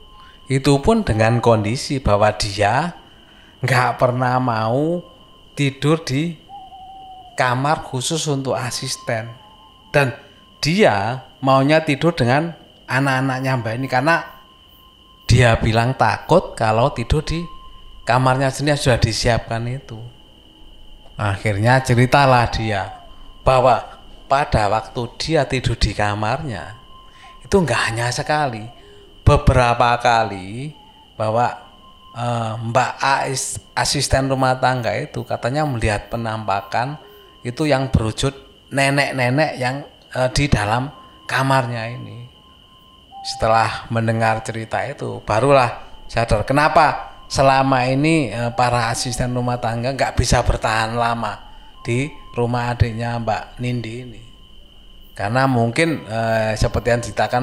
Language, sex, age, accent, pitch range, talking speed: Indonesian, male, 30-49, native, 110-135 Hz, 105 wpm